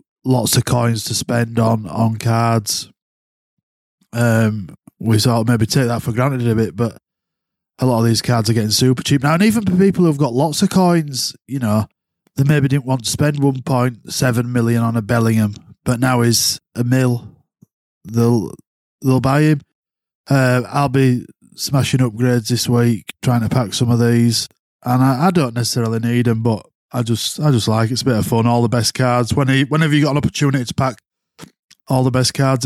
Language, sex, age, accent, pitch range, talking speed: English, male, 20-39, British, 115-135 Hz, 200 wpm